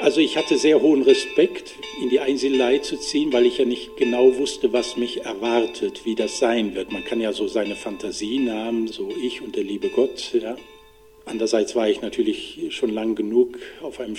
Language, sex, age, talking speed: Persian, male, 50-69, 200 wpm